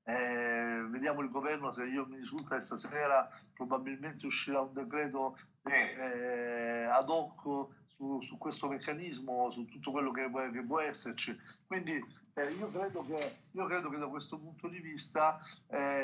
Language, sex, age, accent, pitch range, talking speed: Italian, male, 50-69, native, 120-145 Hz, 150 wpm